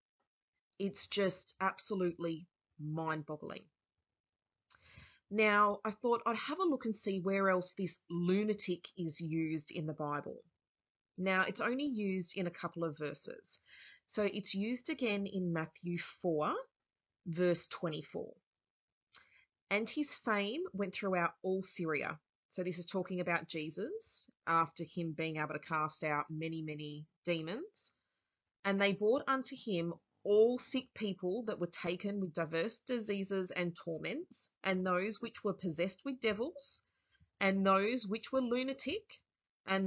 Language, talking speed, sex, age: English, 140 wpm, female, 30-49